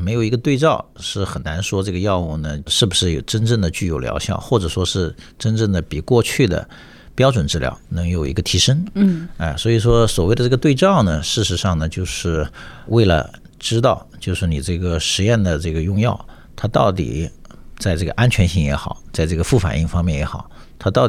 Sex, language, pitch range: male, Chinese, 80-105 Hz